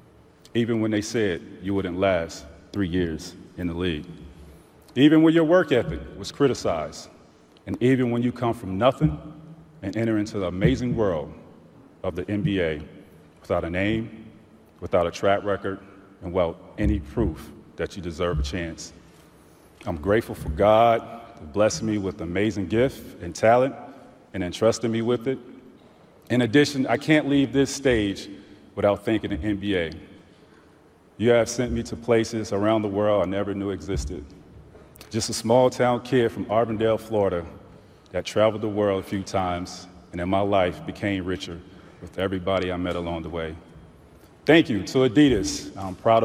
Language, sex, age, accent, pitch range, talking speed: English, male, 40-59, American, 95-120 Hz, 160 wpm